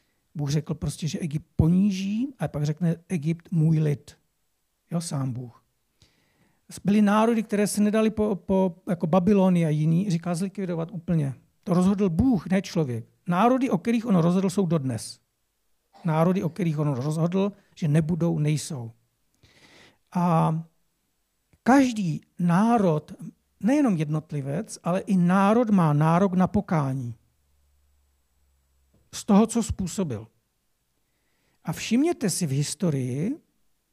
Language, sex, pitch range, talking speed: Czech, male, 155-200 Hz, 125 wpm